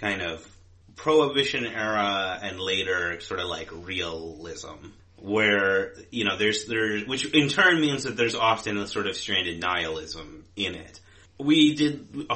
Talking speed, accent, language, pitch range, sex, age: 155 wpm, American, English, 90-110 Hz, male, 30-49